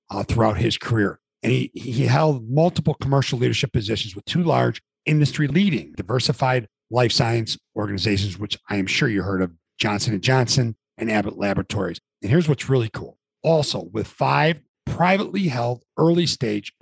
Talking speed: 155 wpm